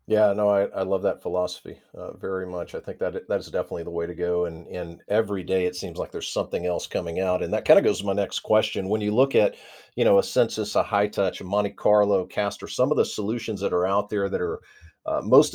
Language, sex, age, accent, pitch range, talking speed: English, male, 50-69, American, 100-140 Hz, 265 wpm